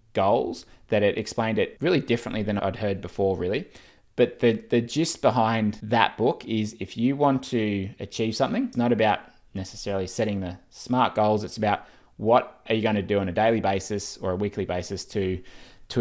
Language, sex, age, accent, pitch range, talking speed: English, male, 20-39, Australian, 95-110 Hz, 195 wpm